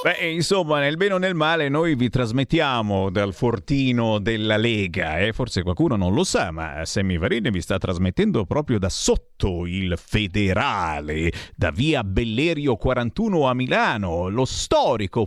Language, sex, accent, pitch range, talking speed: Italian, male, native, 105-155 Hz, 150 wpm